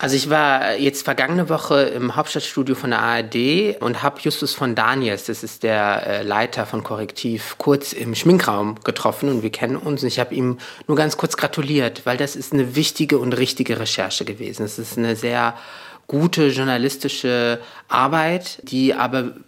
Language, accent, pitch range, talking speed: German, German, 110-135 Hz, 170 wpm